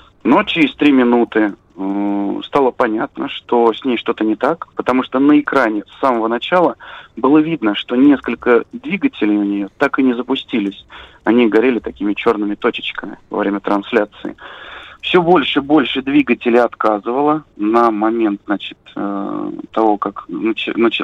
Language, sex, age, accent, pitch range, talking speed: Russian, male, 30-49, native, 110-135 Hz, 150 wpm